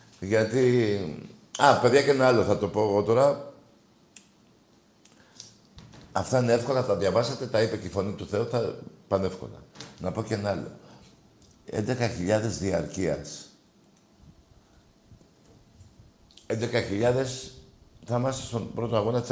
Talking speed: 120 wpm